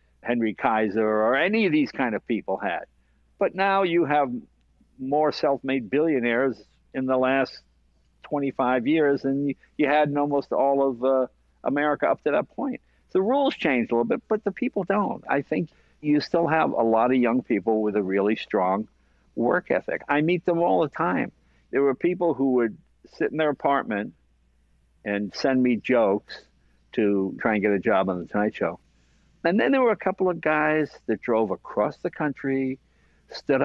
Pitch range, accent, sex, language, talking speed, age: 105-150 Hz, American, male, English, 190 wpm, 60-79